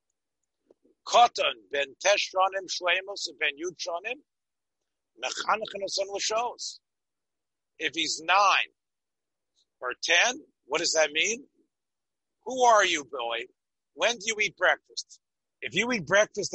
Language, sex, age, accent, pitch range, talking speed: English, male, 50-69, American, 165-225 Hz, 80 wpm